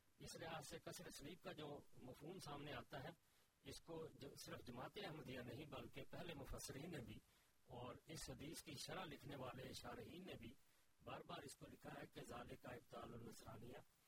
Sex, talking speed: male, 180 wpm